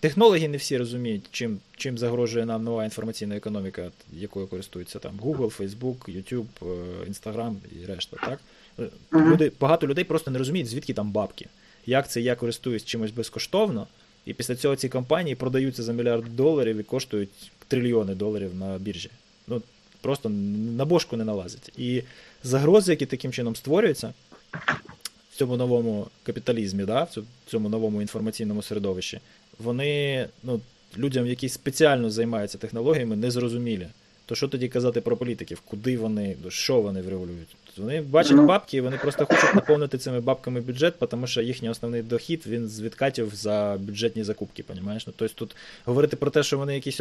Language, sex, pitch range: Ukrainian, male, 110-140 Hz